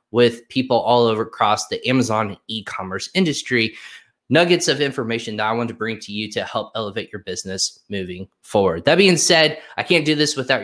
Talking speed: 190 wpm